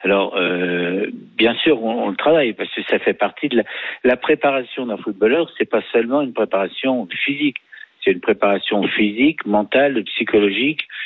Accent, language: French, French